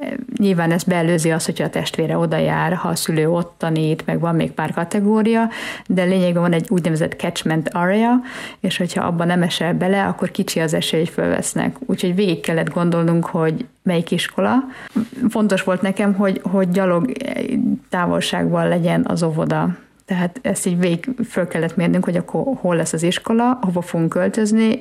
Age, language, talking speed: 50-69, Hungarian, 170 wpm